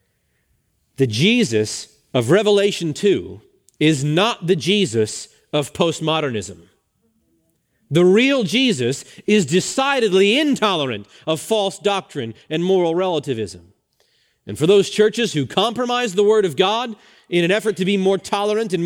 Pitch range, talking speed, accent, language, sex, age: 125-200 Hz, 130 wpm, American, English, male, 40-59